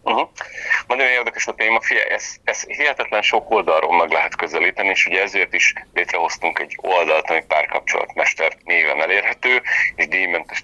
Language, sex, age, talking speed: Hungarian, male, 40-59, 145 wpm